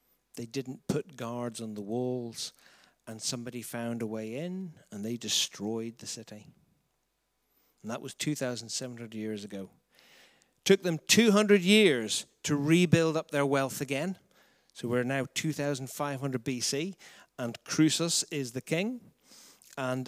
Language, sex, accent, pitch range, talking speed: English, male, British, 120-155 Hz, 160 wpm